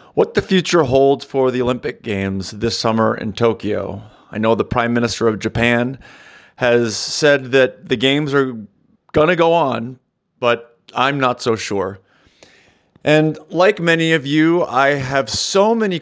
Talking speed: 160 wpm